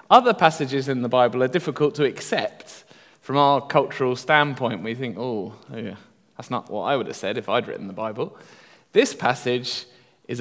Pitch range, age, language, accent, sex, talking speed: 115-140 Hz, 20-39, English, British, male, 180 wpm